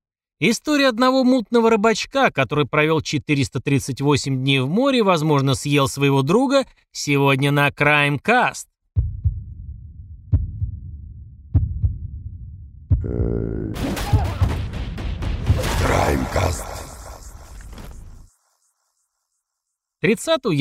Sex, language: male, Russian